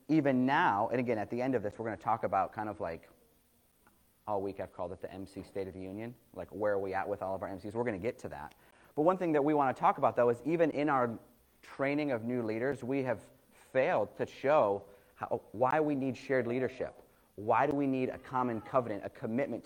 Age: 30-49